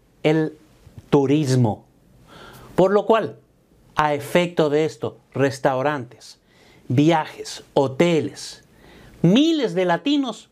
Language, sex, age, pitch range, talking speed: Spanish, male, 50-69, 145-195 Hz, 85 wpm